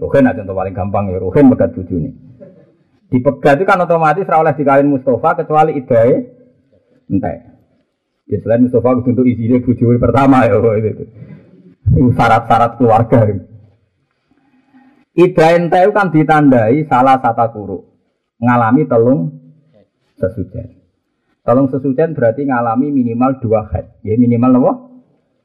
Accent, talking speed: native, 125 wpm